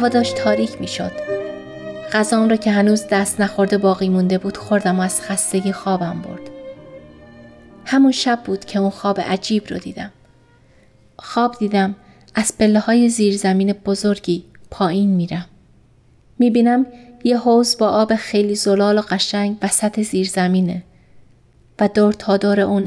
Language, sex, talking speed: Persian, female, 150 wpm